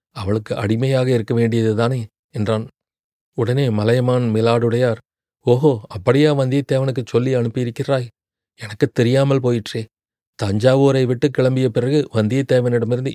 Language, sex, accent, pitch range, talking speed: Tamil, male, native, 115-130 Hz, 95 wpm